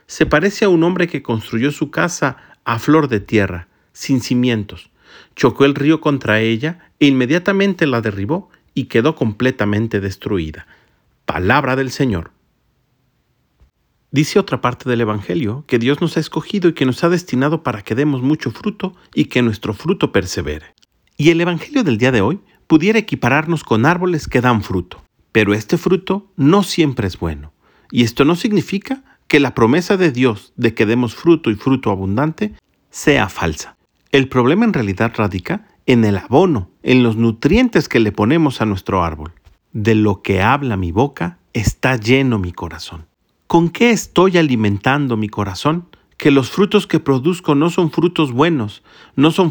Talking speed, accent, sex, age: 170 wpm, Mexican, male, 40-59